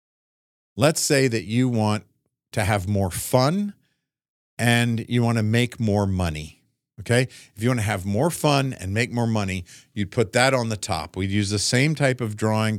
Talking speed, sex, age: 190 wpm, male, 50-69